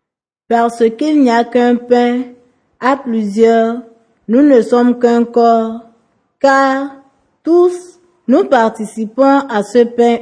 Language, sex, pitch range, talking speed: French, female, 205-245 Hz, 115 wpm